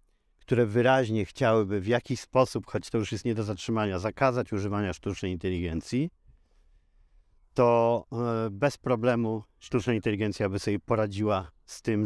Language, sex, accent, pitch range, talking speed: Polish, male, native, 100-125 Hz, 135 wpm